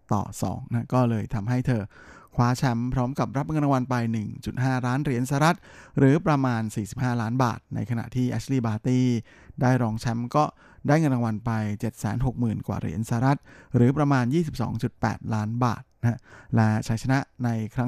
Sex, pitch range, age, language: male, 115-135 Hz, 20-39, Thai